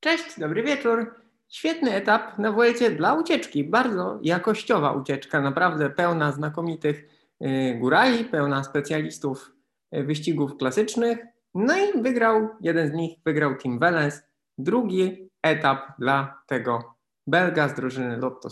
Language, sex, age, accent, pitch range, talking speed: Polish, male, 20-39, native, 135-220 Hz, 120 wpm